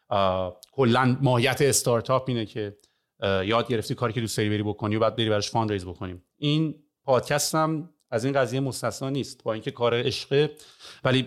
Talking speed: 150 wpm